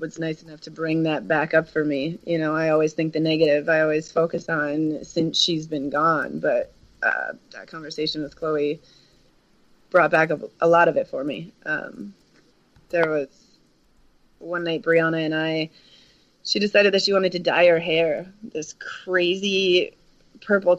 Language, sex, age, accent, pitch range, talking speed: English, female, 30-49, American, 155-185 Hz, 170 wpm